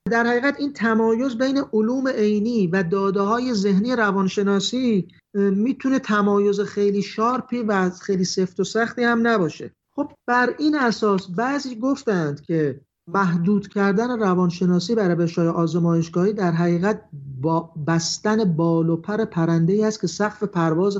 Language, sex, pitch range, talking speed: Persian, male, 155-205 Hz, 135 wpm